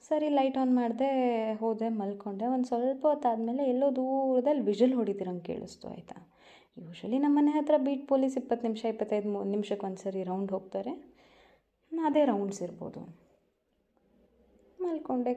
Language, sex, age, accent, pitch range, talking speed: Kannada, female, 20-39, native, 195-260 Hz, 115 wpm